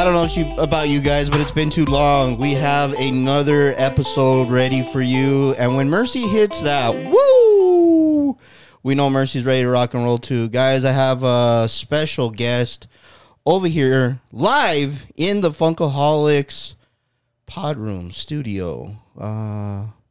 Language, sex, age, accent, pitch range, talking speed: English, male, 20-39, American, 115-150 Hz, 150 wpm